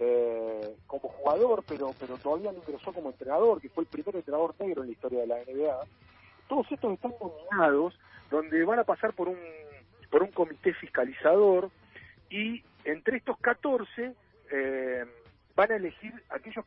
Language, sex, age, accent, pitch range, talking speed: Spanish, male, 40-59, Argentinian, 130-220 Hz, 160 wpm